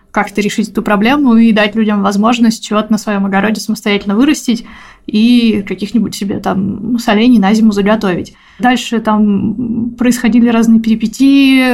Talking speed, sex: 140 wpm, female